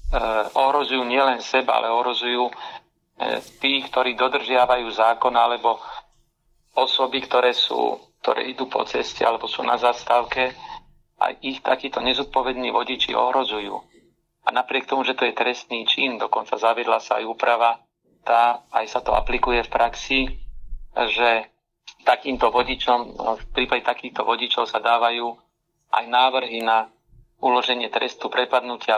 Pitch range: 115-130 Hz